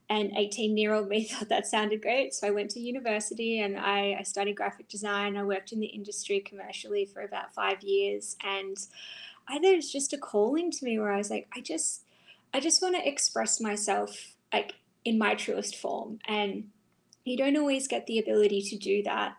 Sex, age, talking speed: female, 10-29, 205 wpm